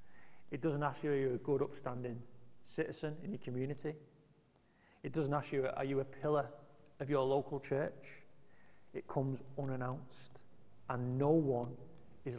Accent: British